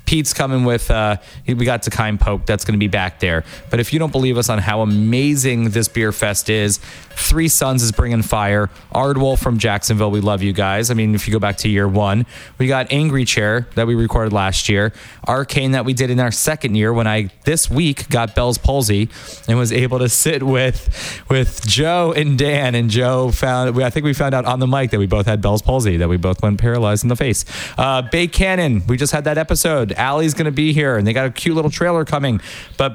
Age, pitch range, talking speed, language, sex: 20-39, 110-150 Hz, 235 wpm, English, male